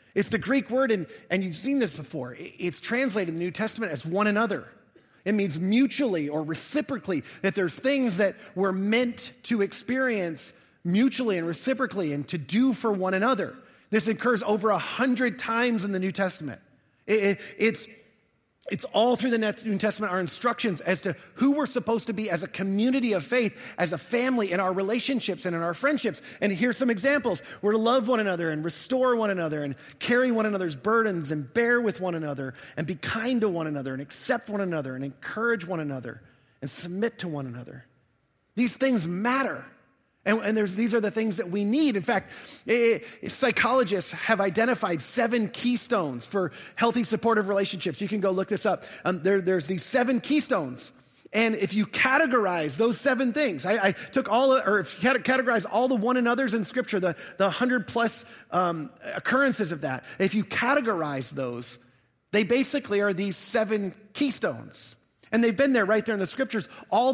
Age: 30-49